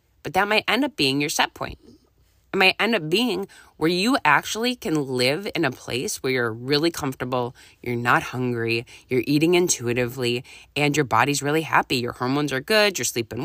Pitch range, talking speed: 125-195 Hz, 190 wpm